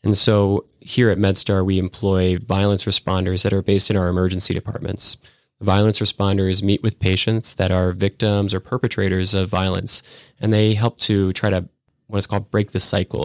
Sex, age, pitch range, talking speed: male, 20-39, 95-110 Hz, 175 wpm